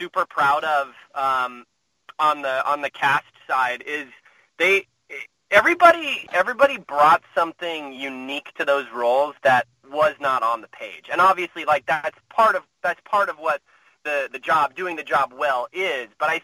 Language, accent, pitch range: English, American, 135-170 Hz